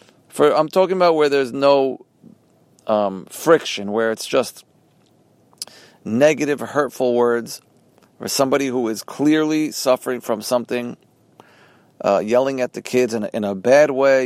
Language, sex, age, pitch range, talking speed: English, male, 40-59, 110-140 Hz, 145 wpm